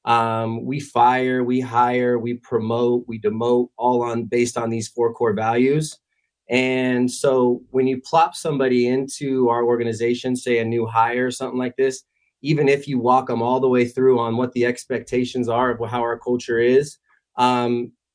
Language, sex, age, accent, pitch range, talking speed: English, male, 20-39, American, 115-130 Hz, 180 wpm